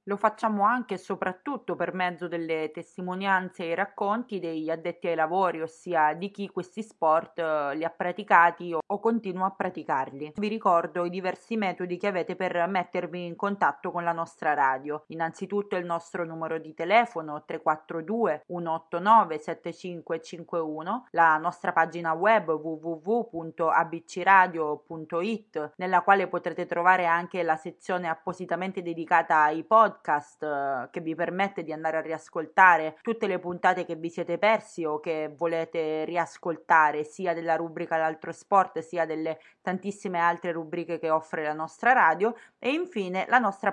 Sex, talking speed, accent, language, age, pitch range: female, 145 wpm, native, Italian, 20-39, 165-195 Hz